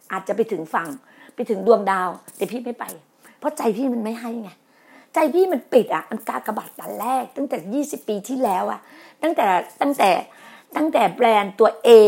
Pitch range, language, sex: 215-285 Hz, Thai, female